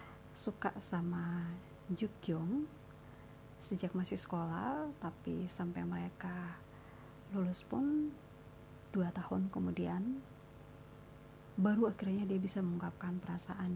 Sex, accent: female, native